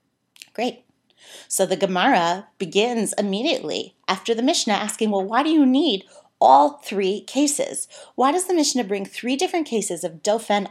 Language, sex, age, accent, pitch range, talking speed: English, female, 30-49, American, 185-240 Hz, 155 wpm